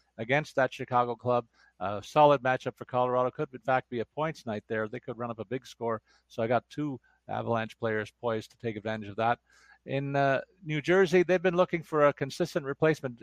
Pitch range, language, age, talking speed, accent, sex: 115-140 Hz, English, 50-69, 215 wpm, American, male